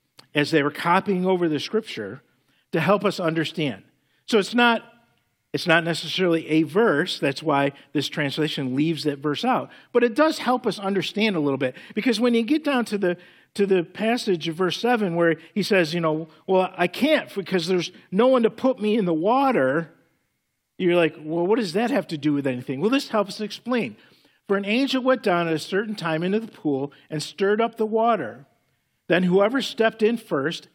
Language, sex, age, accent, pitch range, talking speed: English, male, 50-69, American, 160-220 Hz, 205 wpm